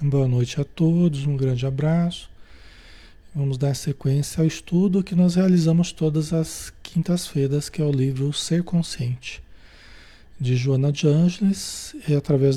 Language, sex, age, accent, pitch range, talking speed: Portuguese, male, 40-59, Brazilian, 135-175 Hz, 145 wpm